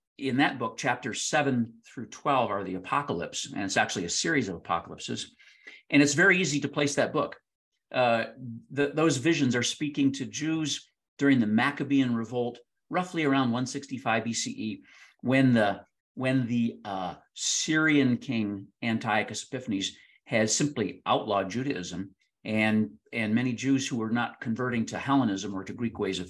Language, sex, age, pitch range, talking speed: English, male, 50-69, 110-140 Hz, 155 wpm